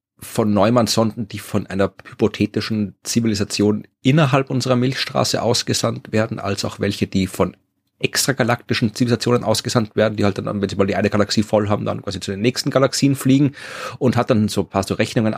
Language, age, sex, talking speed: German, 30-49, male, 180 wpm